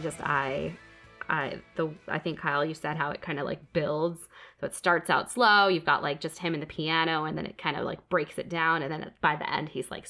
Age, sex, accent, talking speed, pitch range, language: 20-39, female, American, 260 wpm, 155-180 Hz, English